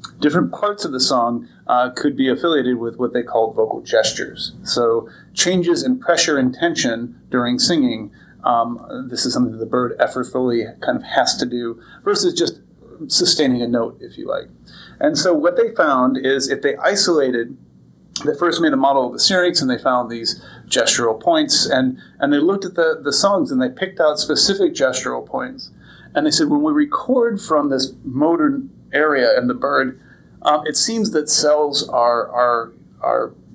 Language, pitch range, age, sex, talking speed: English, 120-195 Hz, 30-49, male, 185 wpm